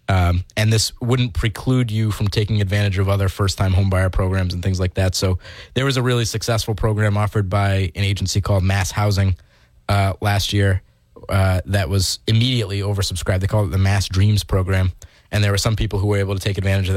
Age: 20-39